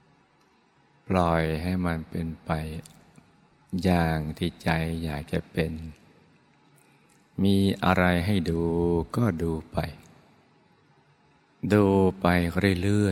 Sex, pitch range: male, 80-95 Hz